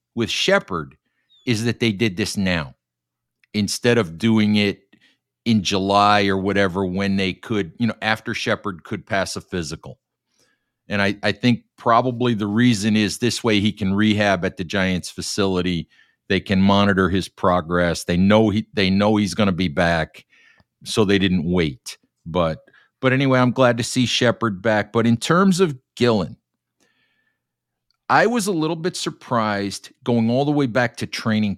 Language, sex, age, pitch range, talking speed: English, male, 50-69, 95-115 Hz, 170 wpm